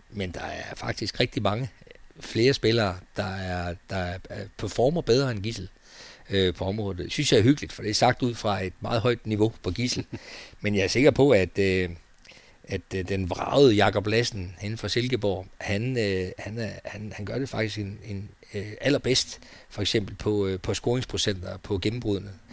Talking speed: 195 wpm